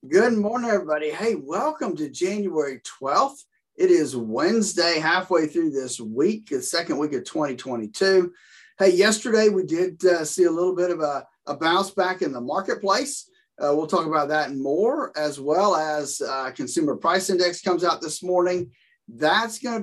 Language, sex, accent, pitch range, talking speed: English, male, American, 150-220 Hz, 175 wpm